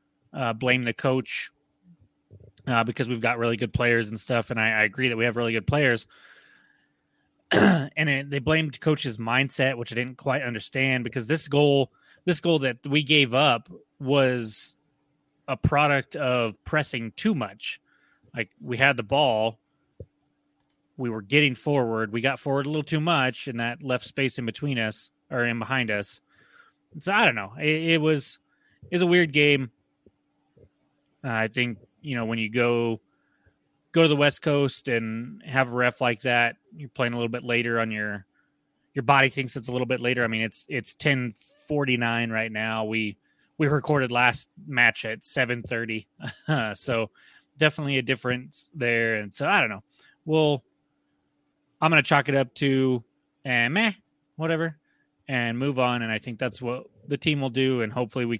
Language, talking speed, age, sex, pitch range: English, 180 wpm, 30-49, male, 115-145 Hz